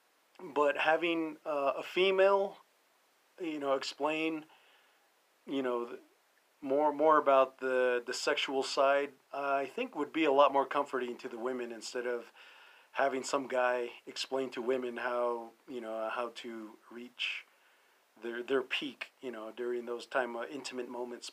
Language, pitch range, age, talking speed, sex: English, 125-155 Hz, 40-59, 150 wpm, male